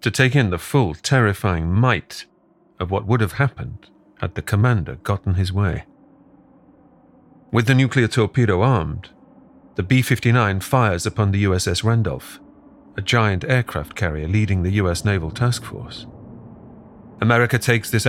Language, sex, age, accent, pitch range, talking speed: English, male, 40-59, British, 95-120 Hz, 145 wpm